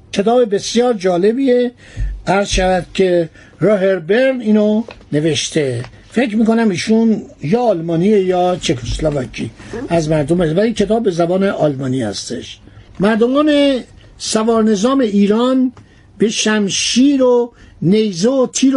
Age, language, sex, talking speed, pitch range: 60-79, Persian, male, 105 wpm, 170-230 Hz